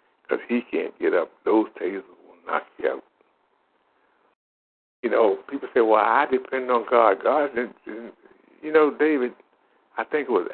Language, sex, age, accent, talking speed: English, male, 60-79, American, 165 wpm